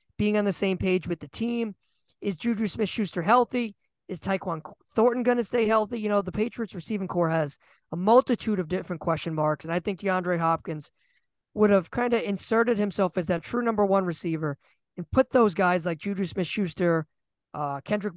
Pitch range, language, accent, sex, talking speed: 165-210 Hz, English, American, male, 190 wpm